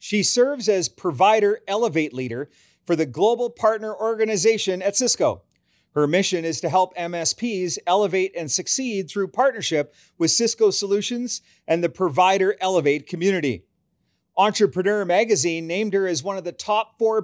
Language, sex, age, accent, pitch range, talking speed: English, male, 40-59, American, 175-220 Hz, 145 wpm